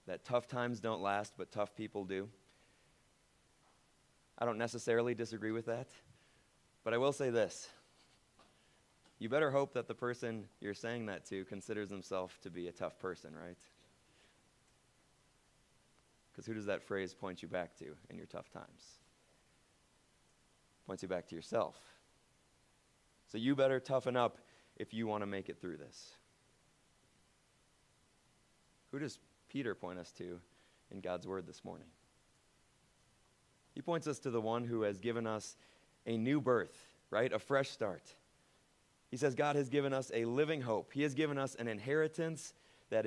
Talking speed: 155 wpm